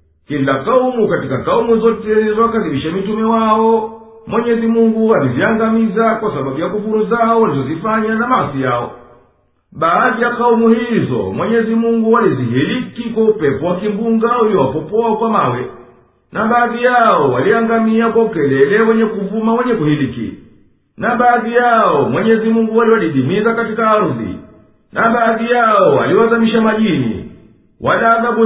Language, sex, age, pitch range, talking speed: Swahili, male, 50-69, 200-230 Hz, 125 wpm